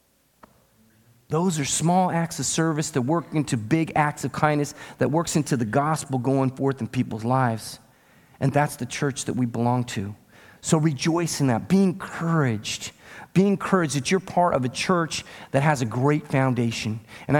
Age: 40-59